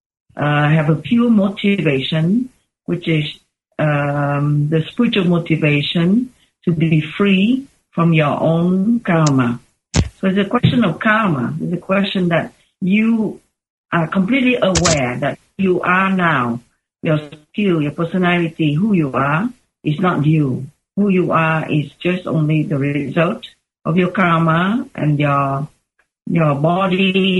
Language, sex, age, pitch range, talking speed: English, female, 50-69, 150-195 Hz, 135 wpm